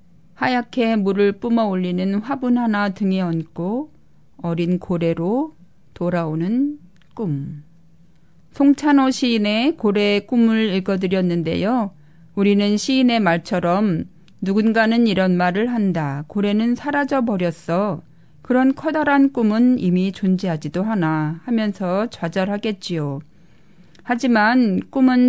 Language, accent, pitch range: Korean, native, 175-235 Hz